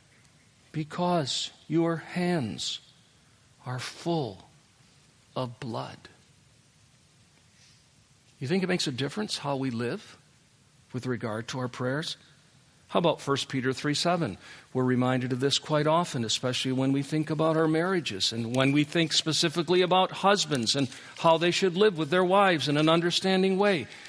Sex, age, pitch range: male, 50-69, 130-175 Hz